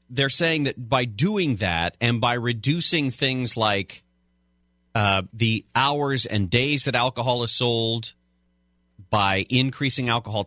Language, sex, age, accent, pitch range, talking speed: English, male, 30-49, American, 95-135 Hz, 130 wpm